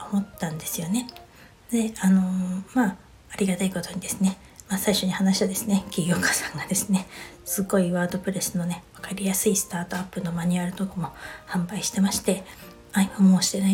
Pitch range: 185-215 Hz